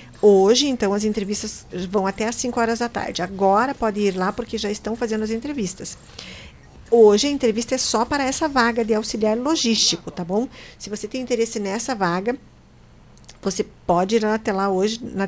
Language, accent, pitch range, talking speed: Portuguese, Brazilian, 200-245 Hz, 185 wpm